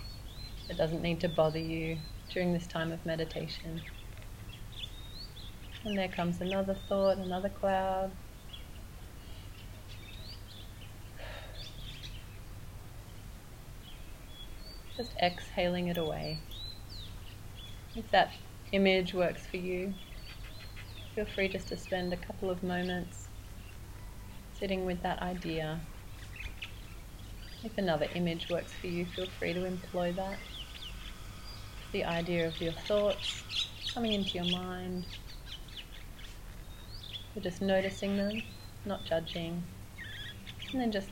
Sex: female